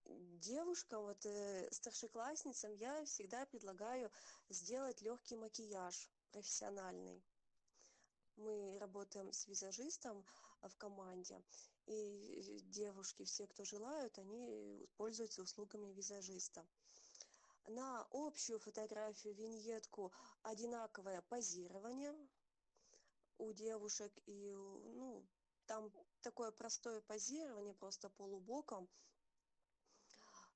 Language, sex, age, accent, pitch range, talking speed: Russian, female, 20-39, native, 200-235 Hz, 80 wpm